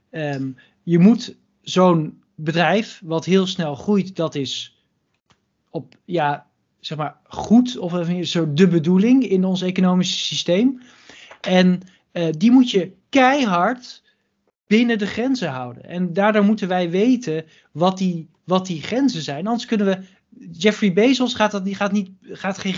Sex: male